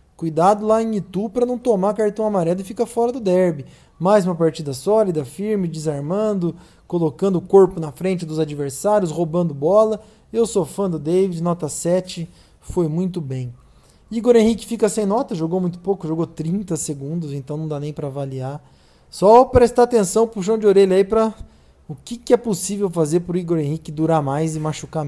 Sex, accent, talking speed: male, Brazilian, 185 wpm